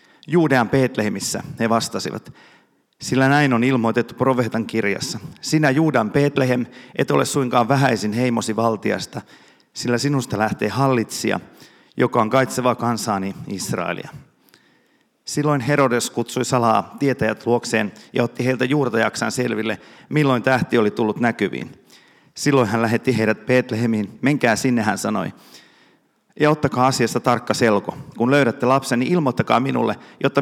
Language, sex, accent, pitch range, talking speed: Finnish, male, native, 110-135 Hz, 130 wpm